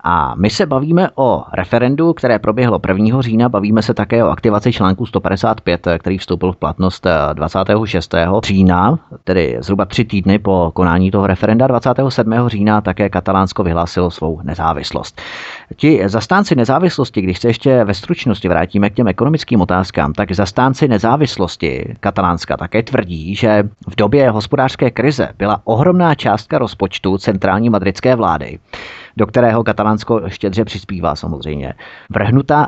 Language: Czech